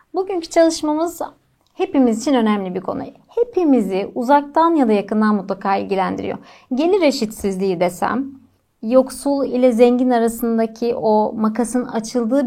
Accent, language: native, Turkish